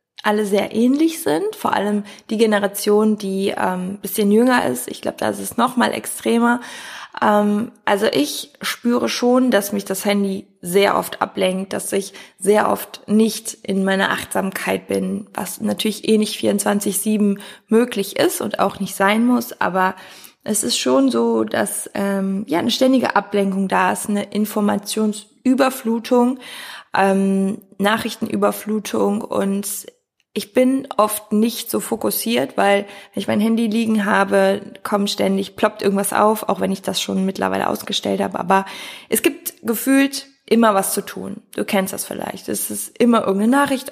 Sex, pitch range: female, 195-225 Hz